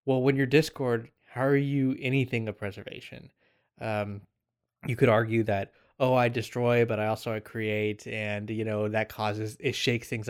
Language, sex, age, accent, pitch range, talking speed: English, male, 20-39, American, 105-130 Hz, 180 wpm